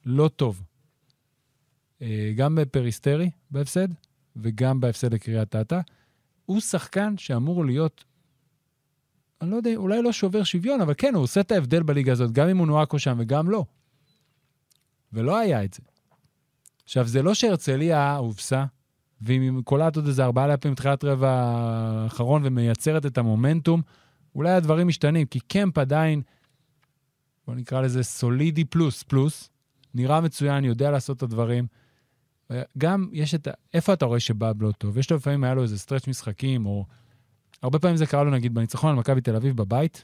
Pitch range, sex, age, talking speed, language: 125-160 Hz, male, 30-49, 155 wpm, Hebrew